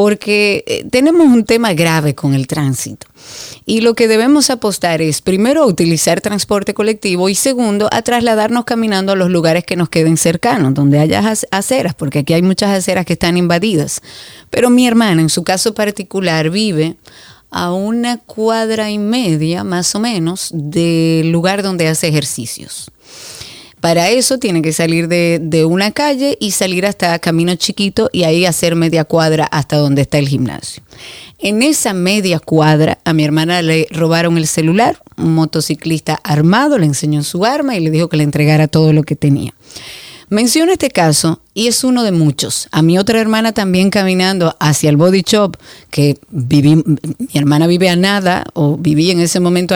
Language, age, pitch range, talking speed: Spanish, 30-49, 160-210 Hz, 175 wpm